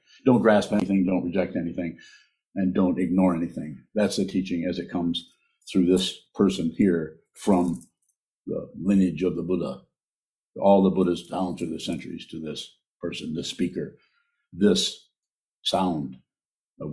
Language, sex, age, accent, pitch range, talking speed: English, male, 60-79, American, 90-95 Hz, 145 wpm